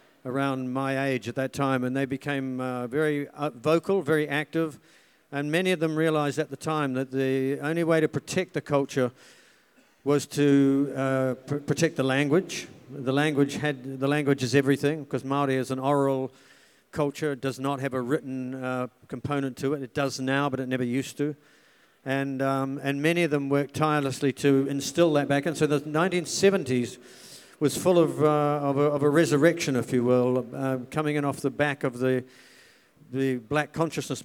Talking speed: 190 wpm